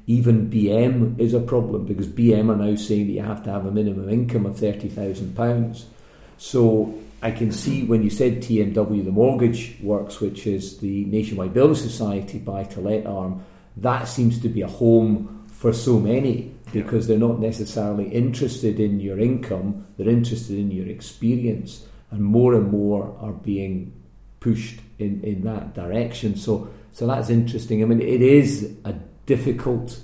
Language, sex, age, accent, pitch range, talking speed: English, male, 40-59, British, 100-115 Hz, 165 wpm